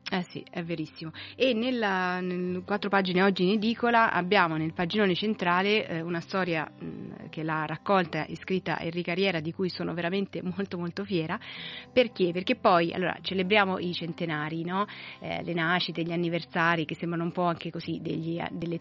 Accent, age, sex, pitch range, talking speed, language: native, 30-49, female, 165-190 Hz, 175 wpm, Italian